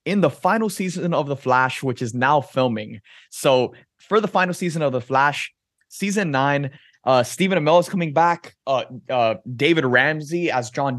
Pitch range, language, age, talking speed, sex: 115-150 Hz, English, 20-39, 180 wpm, male